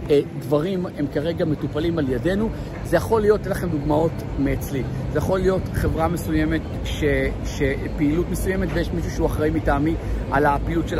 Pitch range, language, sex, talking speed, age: 145-180 Hz, Hebrew, male, 155 wpm, 50-69